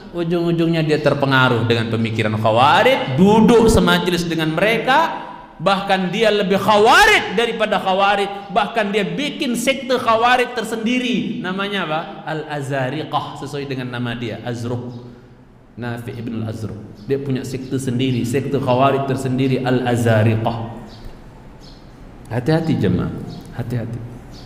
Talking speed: 110 wpm